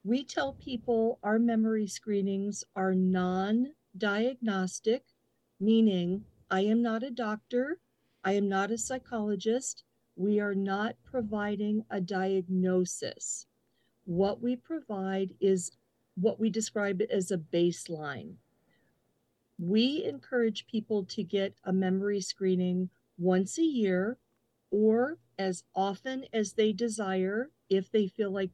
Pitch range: 190-230 Hz